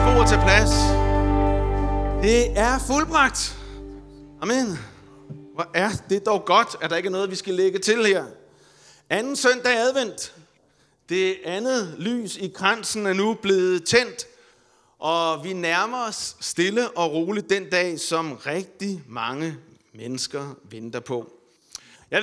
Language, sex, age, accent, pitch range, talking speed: Danish, male, 30-49, native, 150-205 Hz, 140 wpm